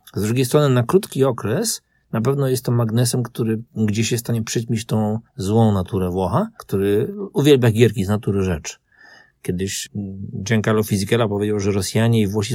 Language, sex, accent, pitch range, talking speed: Polish, male, native, 100-125 Hz, 165 wpm